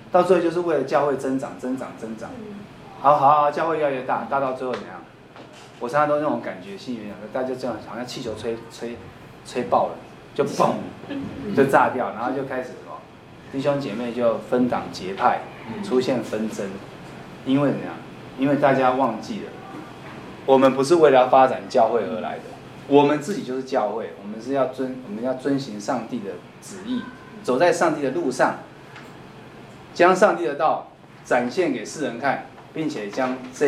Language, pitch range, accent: Chinese, 125-165 Hz, native